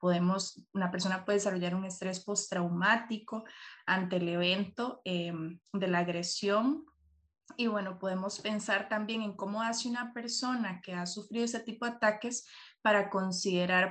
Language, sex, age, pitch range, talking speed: Spanish, female, 20-39, 180-215 Hz, 145 wpm